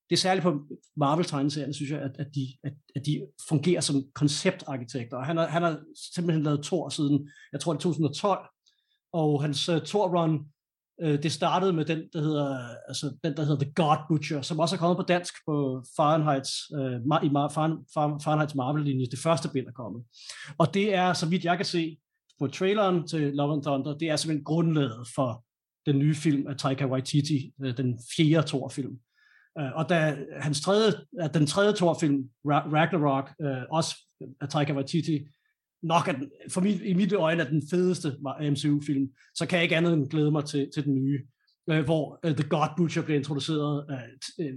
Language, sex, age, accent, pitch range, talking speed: English, male, 30-49, Danish, 140-170 Hz, 190 wpm